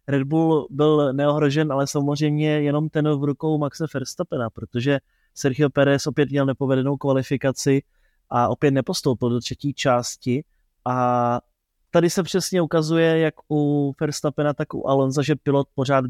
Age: 20-39